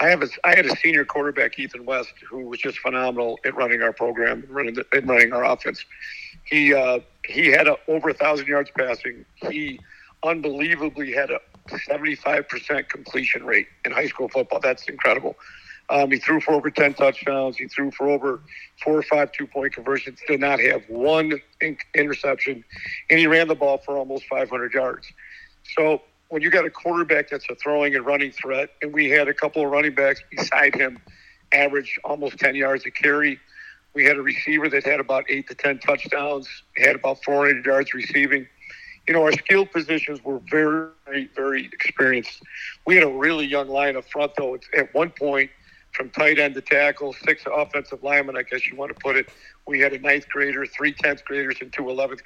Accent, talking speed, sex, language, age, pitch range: American, 185 wpm, male, English, 50-69, 135-150 Hz